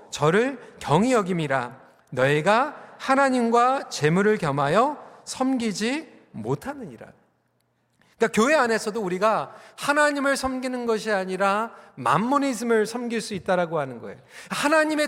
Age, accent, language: 40-59, native, Korean